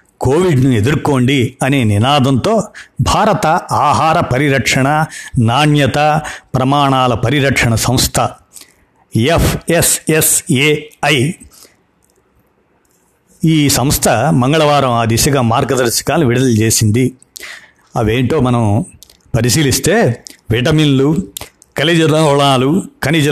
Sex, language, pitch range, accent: male, Telugu, 125-150 Hz, native